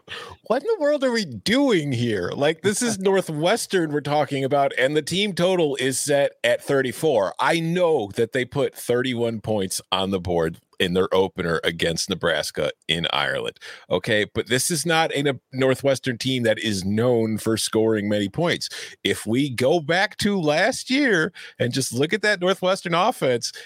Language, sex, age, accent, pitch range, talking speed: English, male, 40-59, American, 105-160 Hz, 175 wpm